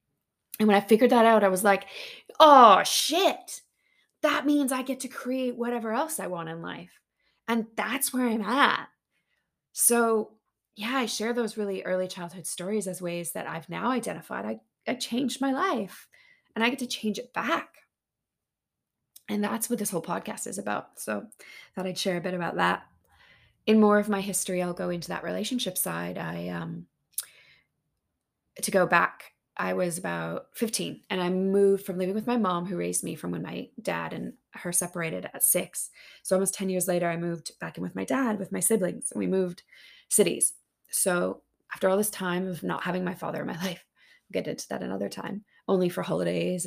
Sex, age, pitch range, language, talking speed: female, 20-39, 175-225 Hz, English, 195 wpm